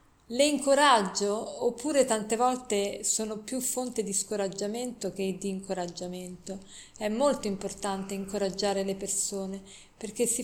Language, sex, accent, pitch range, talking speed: Italian, female, native, 200-240 Hz, 120 wpm